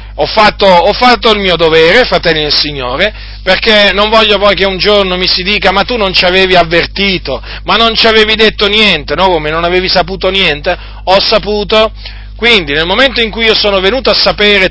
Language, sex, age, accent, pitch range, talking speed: Italian, male, 40-59, native, 175-230 Hz, 205 wpm